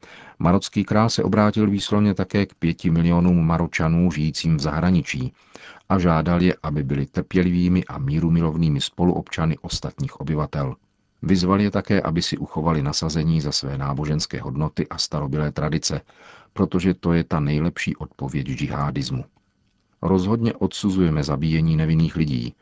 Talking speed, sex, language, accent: 135 wpm, male, Czech, native